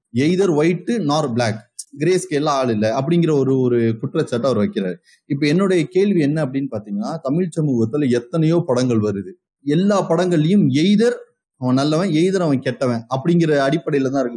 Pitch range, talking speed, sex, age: 130-180 Hz, 155 wpm, male, 30-49